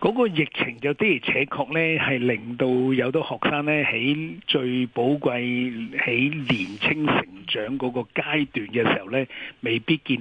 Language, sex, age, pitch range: Chinese, male, 60-79, 120-145 Hz